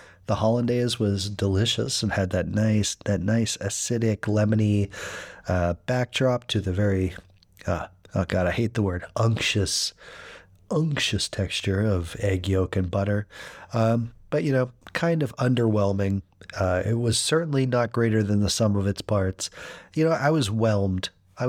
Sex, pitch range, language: male, 100-120 Hz, English